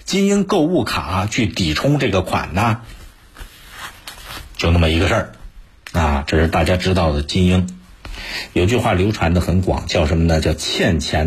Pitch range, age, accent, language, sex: 90-125 Hz, 50-69, native, Chinese, male